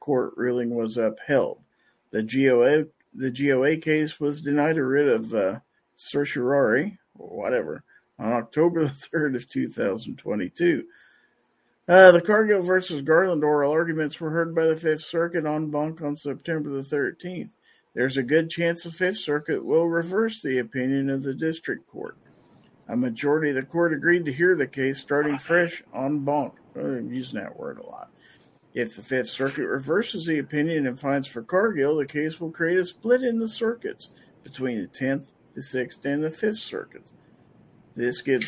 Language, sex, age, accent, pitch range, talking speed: English, male, 50-69, American, 135-170 Hz, 170 wpm